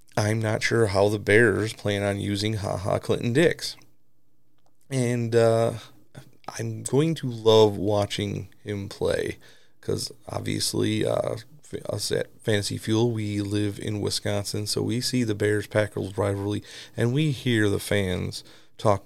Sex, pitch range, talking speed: male, 105-125 Hz, 140 wpm